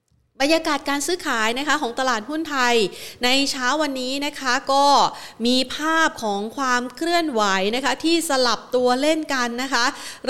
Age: 30-49